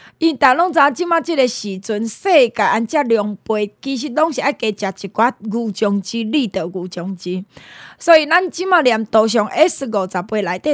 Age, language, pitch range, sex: 20-39, Chinese, 215-300 Hz, female